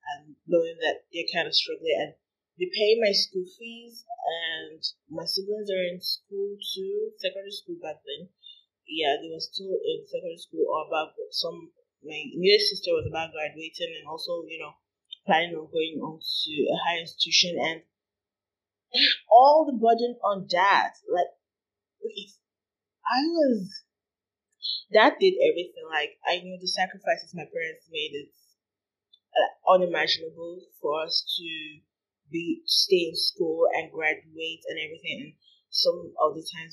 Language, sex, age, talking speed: English, female, 20-39, 150 wpm